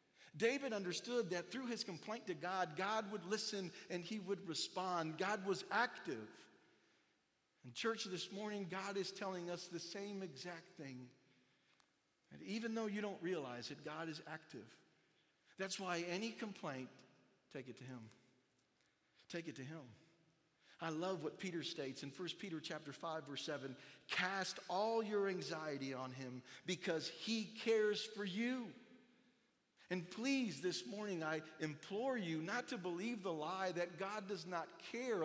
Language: English